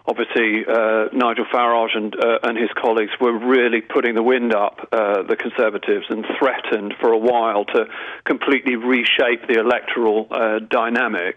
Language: English